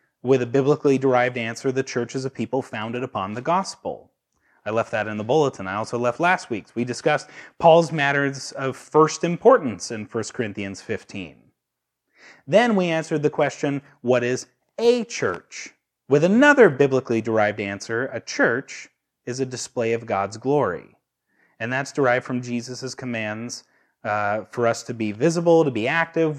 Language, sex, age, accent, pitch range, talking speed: English, male, 30-49, American, 120-160 Hz, 160 wpm